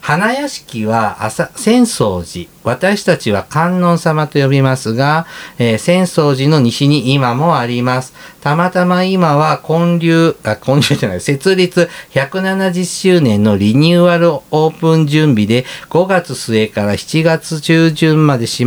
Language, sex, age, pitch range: Japanese, male, 50-69, 130-175 Hz